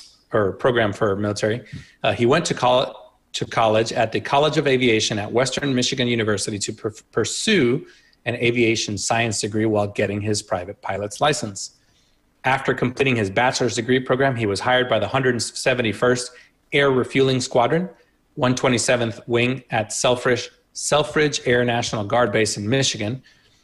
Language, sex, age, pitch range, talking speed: English, male, 30-49, 110-130 Hz, 145 wpm